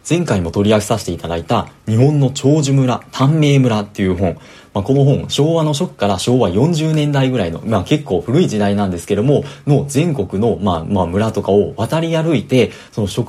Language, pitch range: Japanese, 100-145 Hz